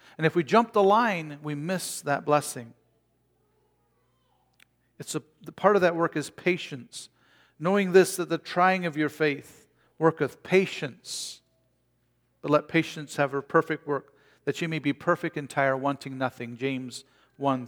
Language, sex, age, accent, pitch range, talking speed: English, male, 50-69, American, 125-165 Hz, 155 wpm